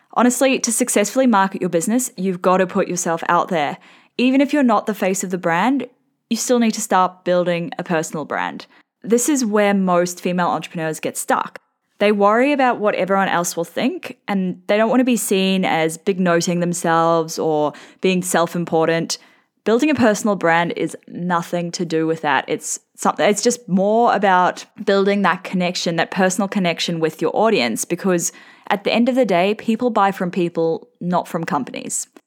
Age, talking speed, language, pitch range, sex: 10-29, 185 wpm, English, 175-240 Hz, female